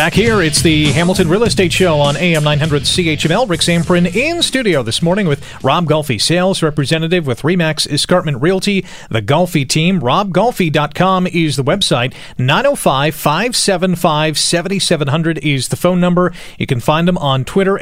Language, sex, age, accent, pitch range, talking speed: English, male, 40-59, American, 145-190 Hz, 150 wpm